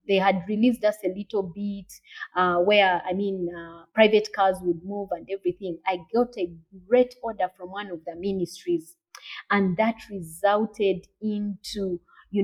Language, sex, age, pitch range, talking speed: English, female, 30-49, 185-245 Hz, 160 wpm